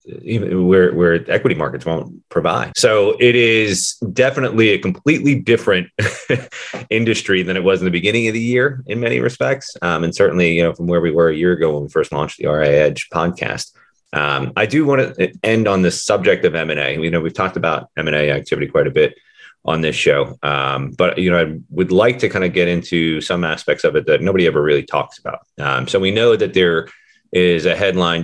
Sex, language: male, English